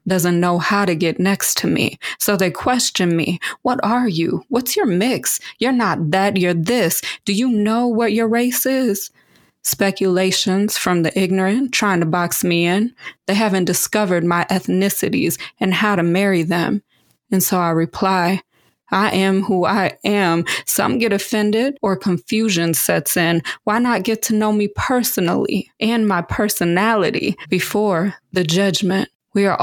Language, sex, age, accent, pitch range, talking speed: English, female, 20-39, American, 180-215 Hz, 160 wpm